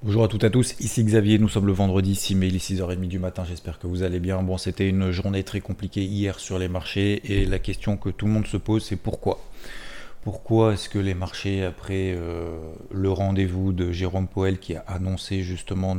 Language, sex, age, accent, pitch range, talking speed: French, male, 30-49, French, 90-105 Hz, 220 wpm